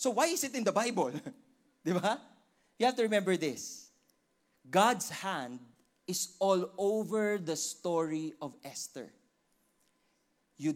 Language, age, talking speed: English, 20-39, 125 wpm